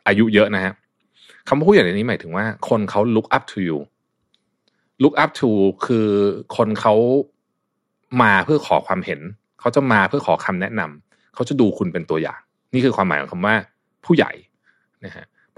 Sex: male